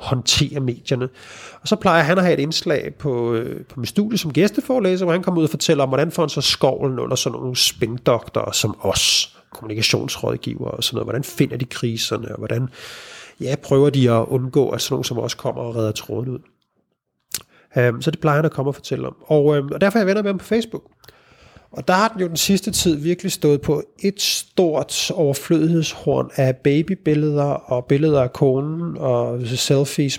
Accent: native